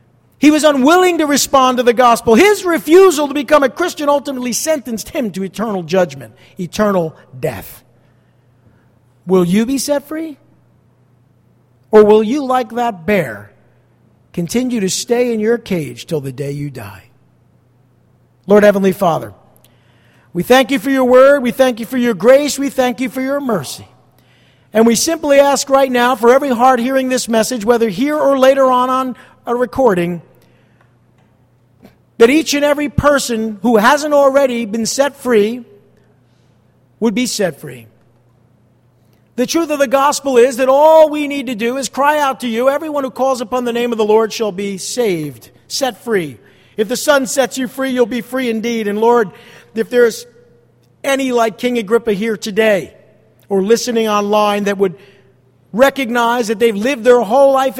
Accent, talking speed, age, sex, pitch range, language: American, 170 wpm, 50-69, male, 175-265 Hz, English